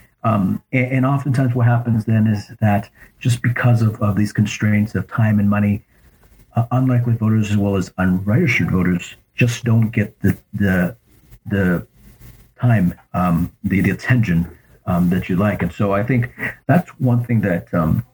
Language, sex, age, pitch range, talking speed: English, male, 40-59, 95-120 Hz, 170 wpm